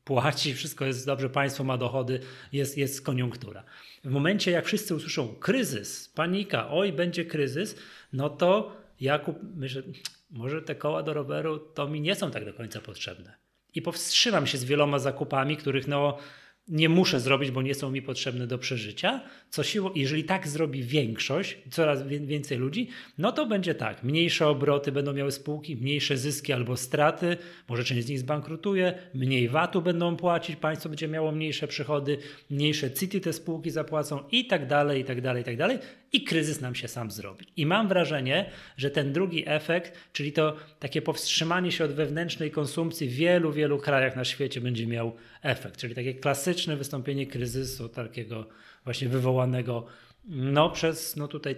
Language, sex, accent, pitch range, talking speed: Polish, male, native, 130-160 Hz, 170 wpm